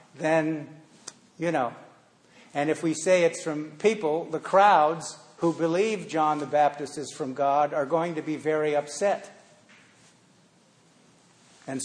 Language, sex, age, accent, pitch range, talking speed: English, male, 50-69, American, 150-175 Hz, 135 wpm